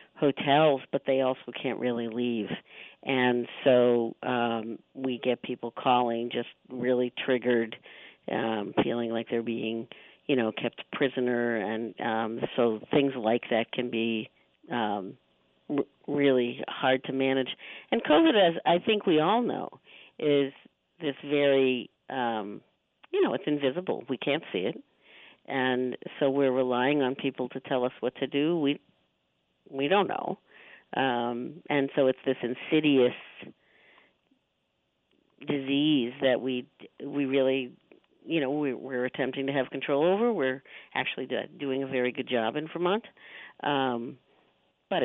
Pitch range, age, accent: 120-140 Hz, 50-69, American